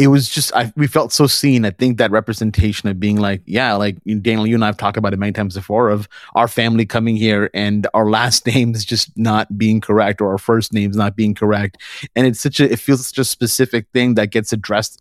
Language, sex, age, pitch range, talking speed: English, male, 30-49, 110-135 Hz, 245 wpm